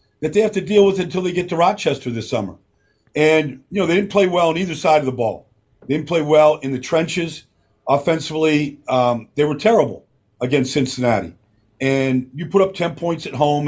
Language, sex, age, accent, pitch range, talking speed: English, male, 50-69, American, 130-180 Hz, 215 wpm